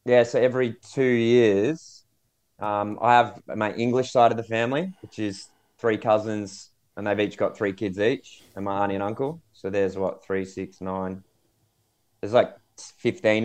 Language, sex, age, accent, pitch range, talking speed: English, male, 20-39, Australian, 95-110 Hz, 175 wpm